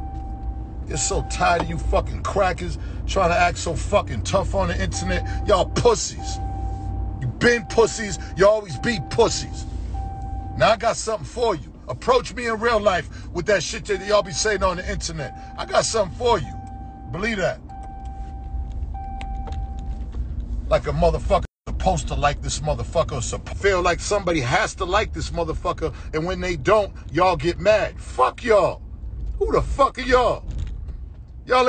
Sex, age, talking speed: male, 50-69, 165 wpm